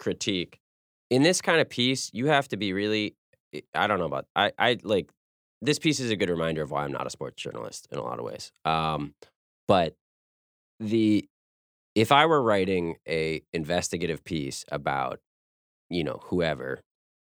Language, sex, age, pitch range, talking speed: English, male, 20-39, 70-105 Hz, 175 wpm